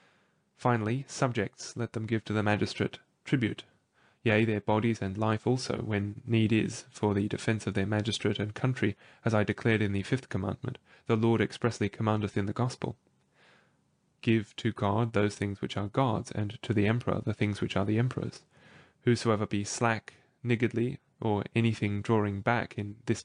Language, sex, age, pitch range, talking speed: English, male, 10-29, 105-120 Hz, 175 wpm